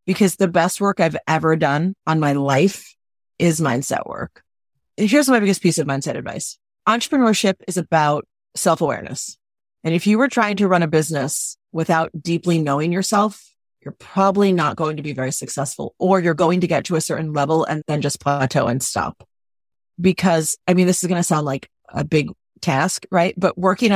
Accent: American